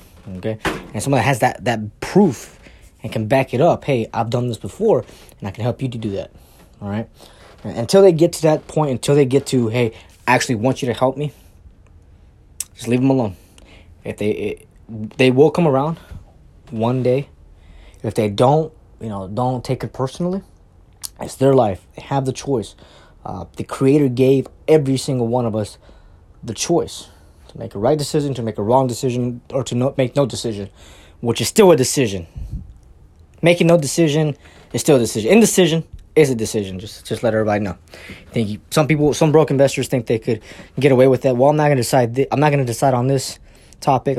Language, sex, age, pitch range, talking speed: English, male, 20-39, 100-135 Hz, 200 wpm